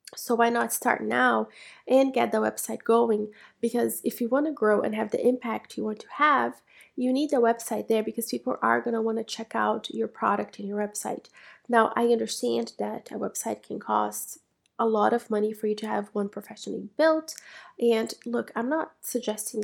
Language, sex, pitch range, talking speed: English, female, 200-230 Hz, 205 wpm